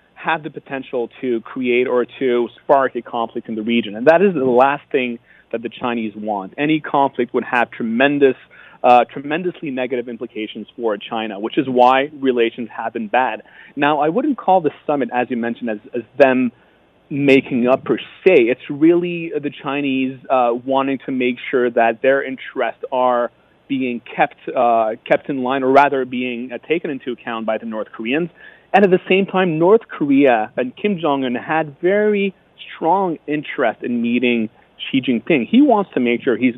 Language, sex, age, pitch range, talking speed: English, male, 30-49, 120-155 Hz, 185 wpm